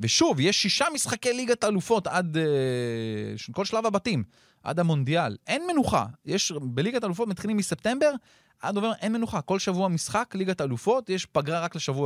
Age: 30-49